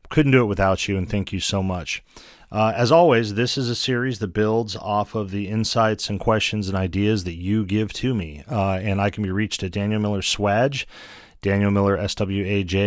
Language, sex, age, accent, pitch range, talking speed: English, male, 40-59, American, 100-135 Hz, 200 wpm